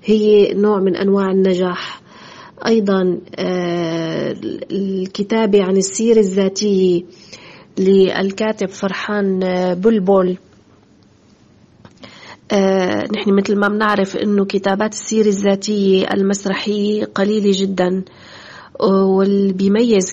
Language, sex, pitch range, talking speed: Arabic, female, 190-210 Hz, 75 wpm